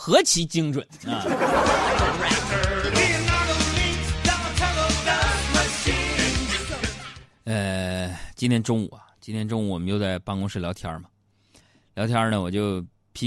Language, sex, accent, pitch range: Chinese, male, native, 100-160 Hz